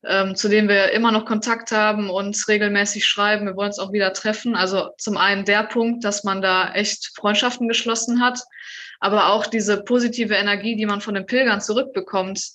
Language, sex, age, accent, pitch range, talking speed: German, female, 20-39, German, 195-225 Hz, 185 wpm